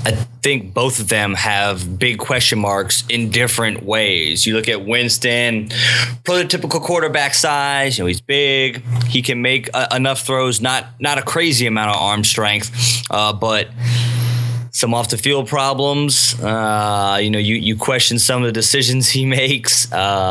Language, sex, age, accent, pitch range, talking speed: English, male, 20-39, American, 110-125 Hz, 165 wpm